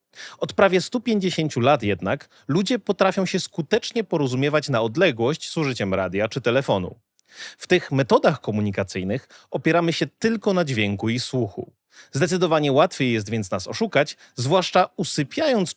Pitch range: 115-185 Hz